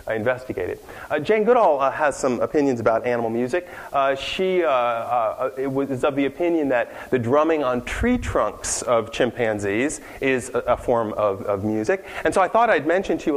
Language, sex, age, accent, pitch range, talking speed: English, male, 40-59, American, 125-170 Hz, 190 wpm